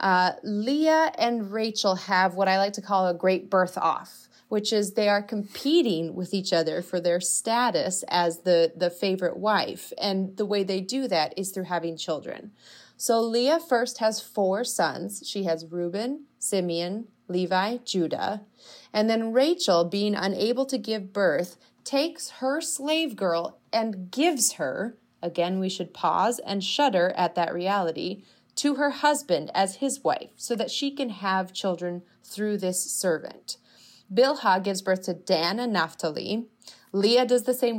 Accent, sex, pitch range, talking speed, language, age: American, female, 180-230 Hz, 160 wpm, English, 30-49